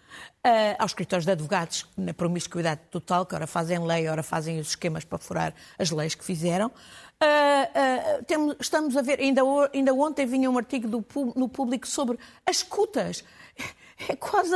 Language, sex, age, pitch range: Portuguese, female, 50-69, 185-295 Hz